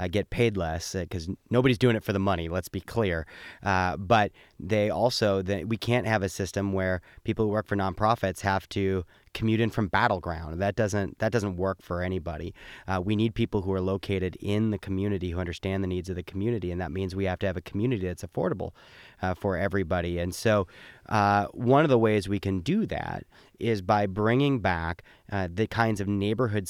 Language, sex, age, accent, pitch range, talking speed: English, male, 30-49, American, 95-115 Hz, 215 wpm